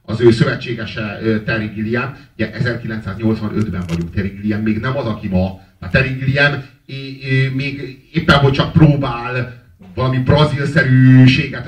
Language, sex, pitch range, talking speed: Hungarian, male, 110-140 Hz, 125 wpm